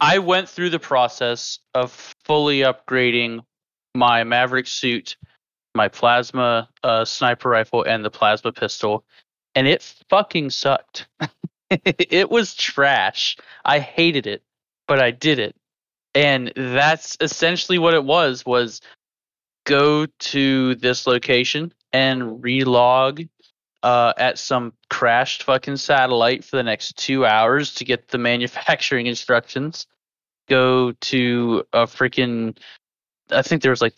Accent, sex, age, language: American, male, 20-39, English